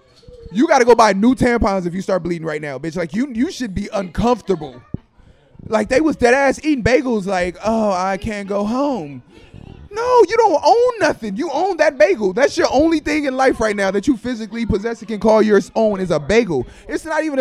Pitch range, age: 180-245 Hz, 20-39